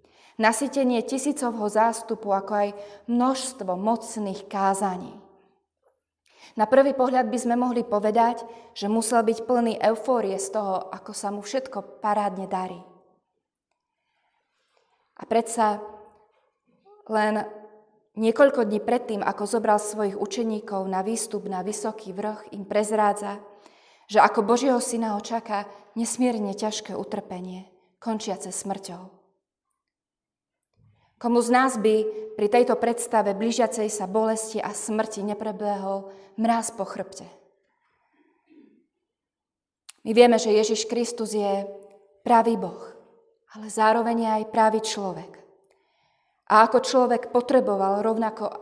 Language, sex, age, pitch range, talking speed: Slovak, female, 20-39, 205-240 Hz, 110 wpm